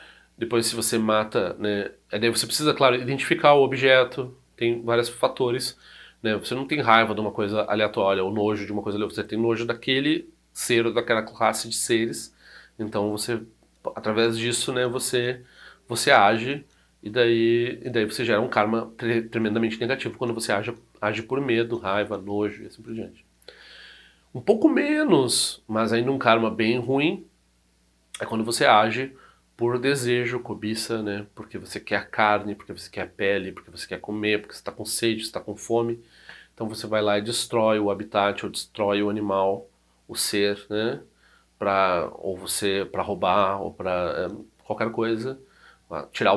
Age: 40-59